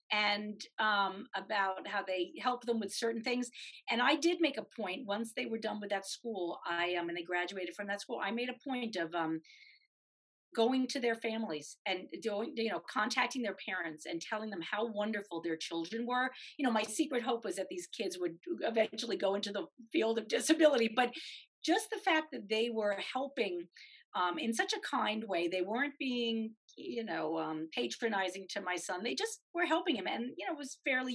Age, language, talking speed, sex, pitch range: 40-59, English, 210 wpm, female, 195-265 Hz